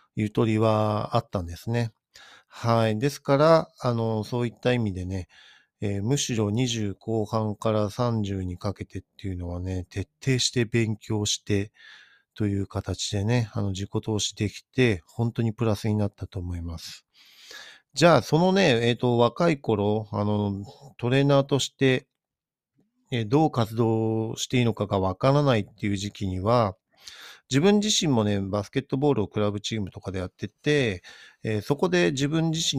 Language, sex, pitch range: Japanese, male, 100-120 Hz